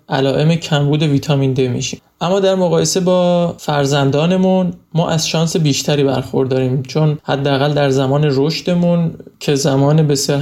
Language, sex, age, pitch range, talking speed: Persian, male, 20-39, 145-165 Hz, 140 wpm